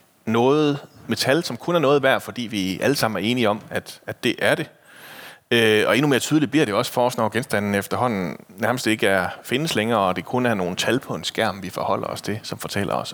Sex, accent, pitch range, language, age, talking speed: male, native, 105-135 Hz, Danish, 30-49, 245 wpm